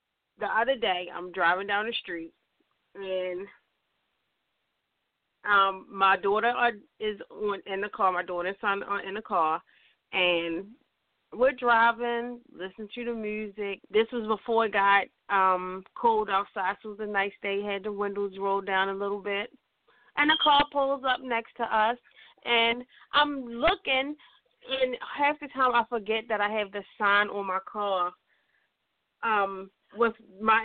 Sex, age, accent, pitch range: female, 30-49, American, 195-295 Hz